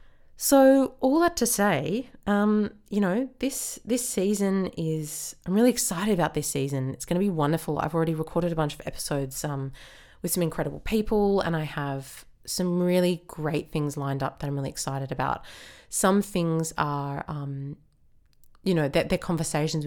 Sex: female